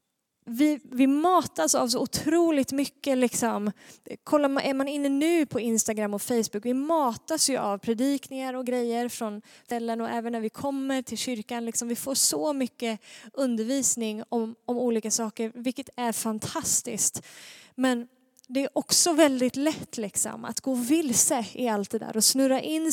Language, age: Swedish, 20-39